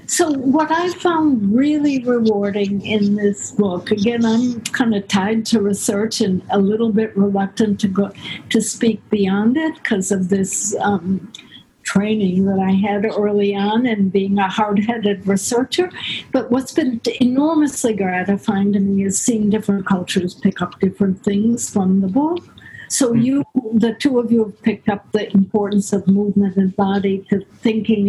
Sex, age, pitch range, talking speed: female, 60-79, 200-240 Hz, 165 wpm